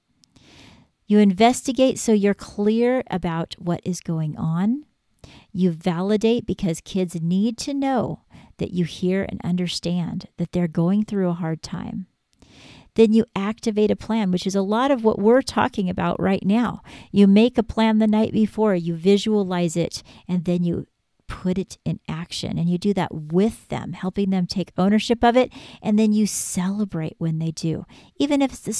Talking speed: 175 wpm